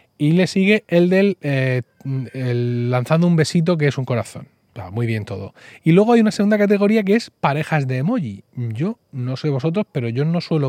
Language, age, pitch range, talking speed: Spanish, 30-49, 125-175 Hz, 200 wpm